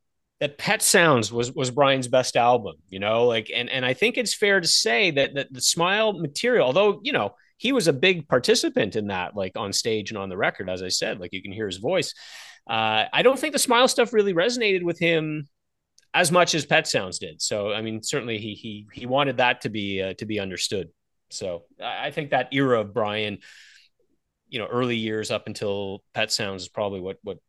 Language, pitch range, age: English, 105-155 Hz, 30-49